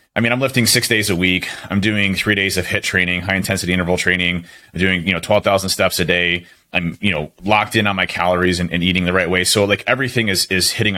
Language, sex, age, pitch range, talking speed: English, male, 30-49, 90-120 Hz, 260 wpm